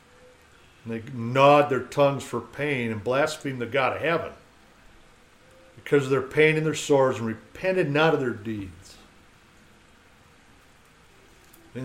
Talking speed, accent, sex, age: 135 wpm, American, male, 60-79